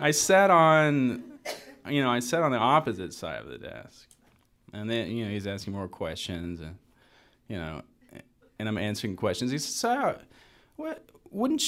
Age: 30-49